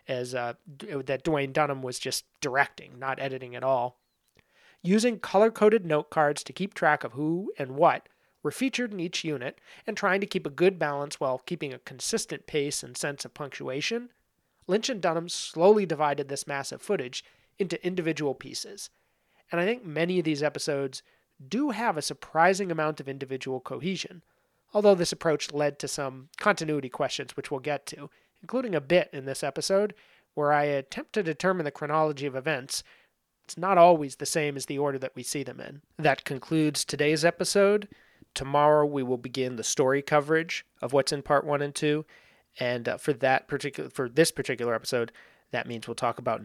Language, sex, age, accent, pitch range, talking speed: English, male, 30-49, American, 135-170 Hz, 185 wpm